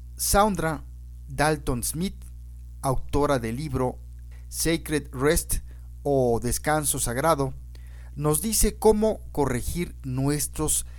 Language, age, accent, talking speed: English, 50-69, Mexican, 85 wpm